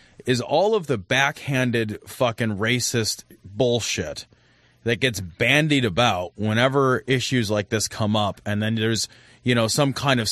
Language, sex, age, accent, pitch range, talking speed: English, male, 30-49, American, 115-165 Hz, 150 wpm